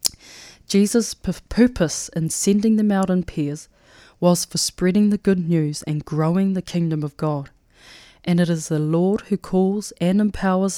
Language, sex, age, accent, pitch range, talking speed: English, female, 20-39, Australian, 155-185 Hz, 160 wpm